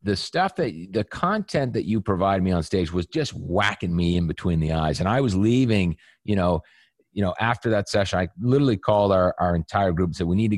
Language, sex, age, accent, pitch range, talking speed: English, male, 40-59, American, 95-140 Hz, 240 wpm